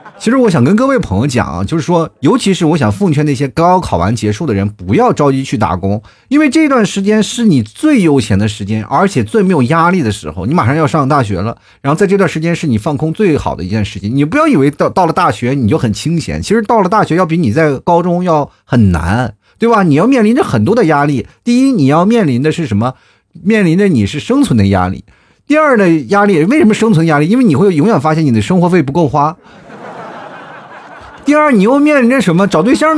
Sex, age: male, 30-49